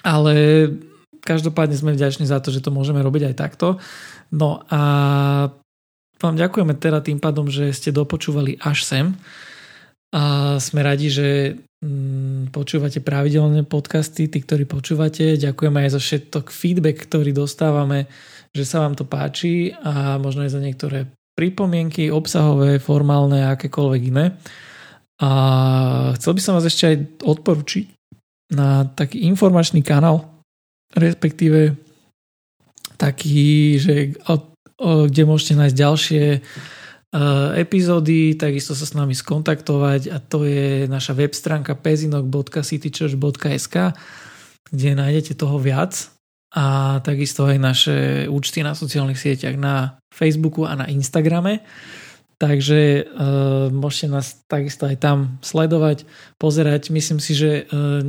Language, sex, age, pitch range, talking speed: Slovak, male, 20-39, 140-155 Hz, 125 wpm